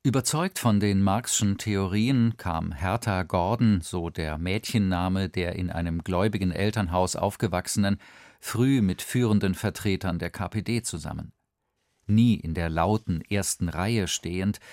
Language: German